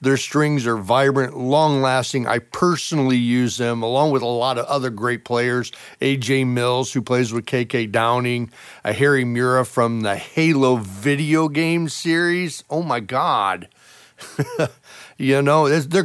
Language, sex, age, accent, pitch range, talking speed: English, male, 40-59, American, 110-135 Hz, 145 wpm